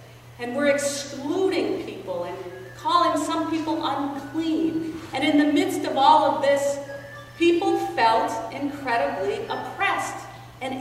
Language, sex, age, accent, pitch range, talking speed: English, female, 40-59, American, 215-320 Hz, 120 wpm